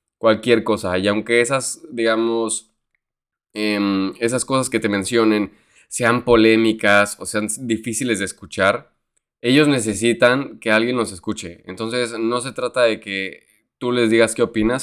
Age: 20-39